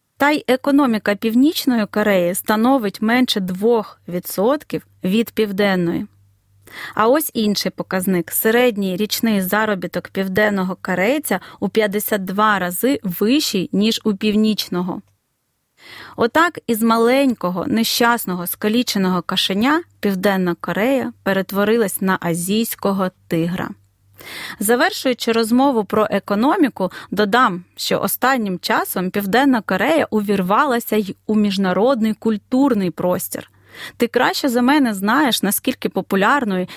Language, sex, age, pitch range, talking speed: Ukrainian, female, 30-49, 190-245 Hz, 100 wpm